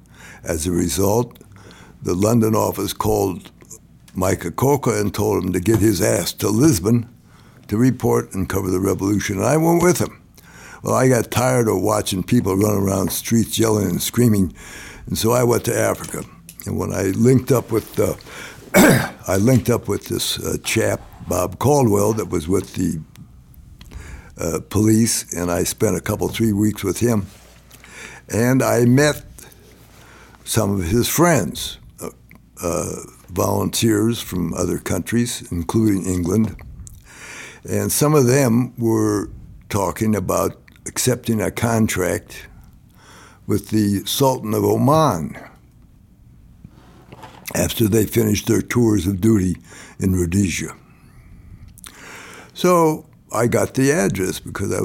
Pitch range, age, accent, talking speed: 95-120 Hz, 60-79, American, 135 wpm